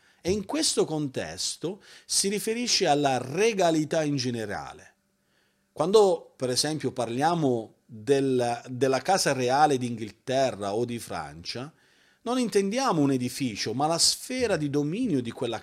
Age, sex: 40-59, male